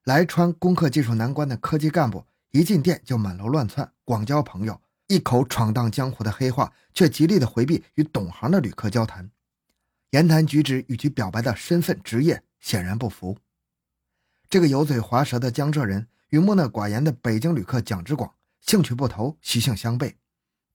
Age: 20-39